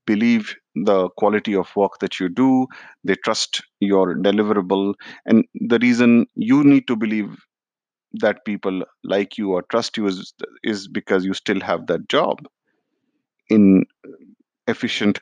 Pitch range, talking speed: 90-110 Hz, 140 wpm